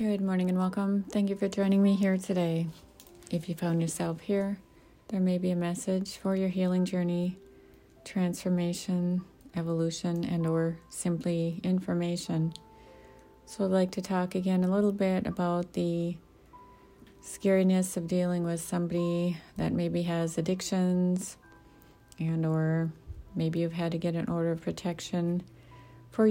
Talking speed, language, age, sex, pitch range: 145 wpm, English, 30-49, female, 165-180 Hz